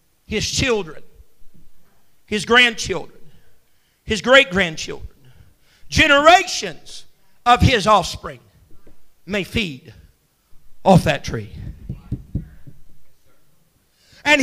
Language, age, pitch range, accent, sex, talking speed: English, 50-69, 215-310 Hz, American, male, 65 wpm